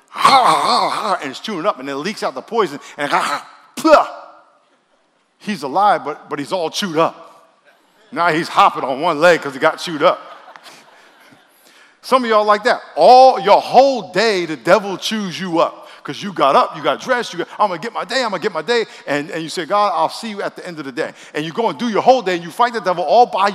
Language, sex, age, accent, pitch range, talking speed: English, male, 50-69, American, 185-245 Hz, 250 wpm